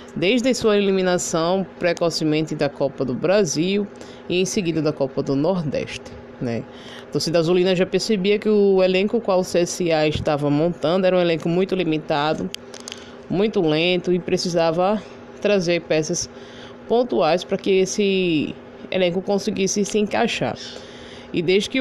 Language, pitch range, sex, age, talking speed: Portuguese, 155-200 Hz, female, 20-39, 140 wpm